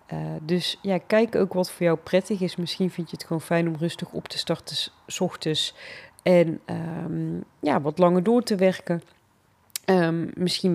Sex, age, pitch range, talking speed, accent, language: female, 30-49, 160-180 Hz, 185 wpm, Dutch, Dutch